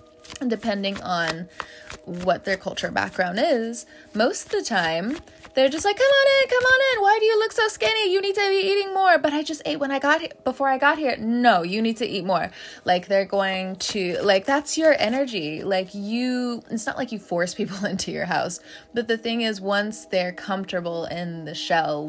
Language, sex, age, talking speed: English, female, 20-39, 215 wpm